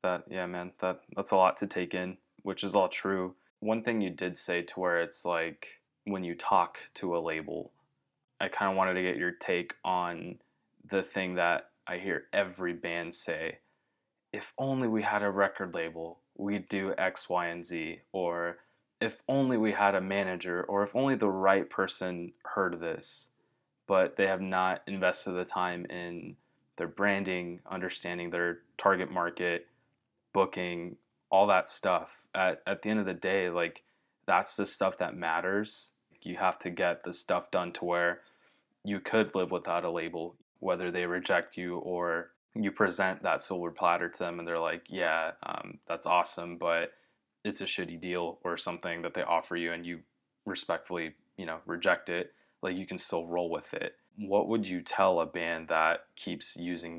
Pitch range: 85-95 Hz